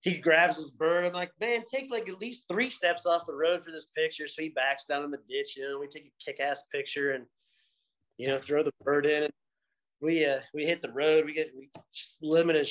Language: English